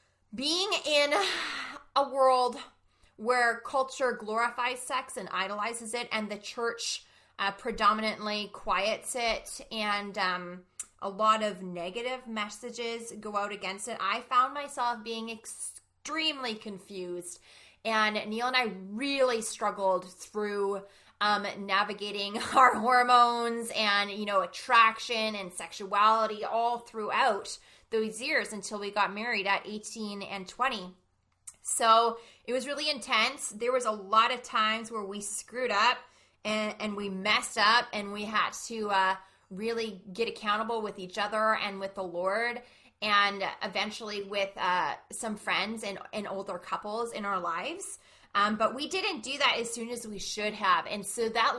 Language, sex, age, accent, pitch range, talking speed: English, female, 20-39, American, 205-240 Hz, 150 wpm